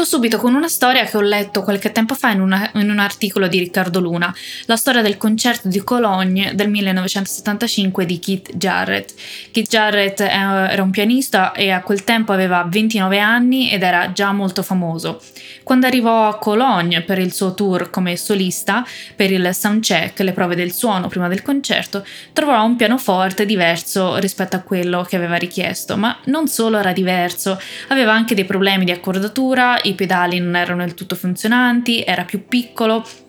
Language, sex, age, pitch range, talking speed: Italian, female, 20-39, 185-225 Hz, 170 wpm